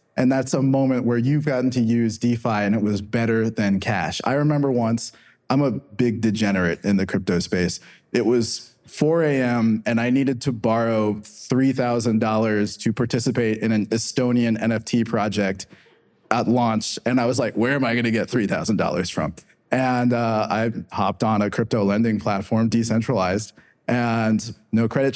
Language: English